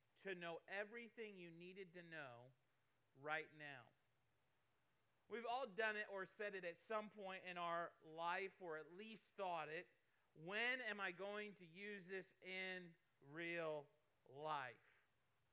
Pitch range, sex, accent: 140-180 Hz, male, American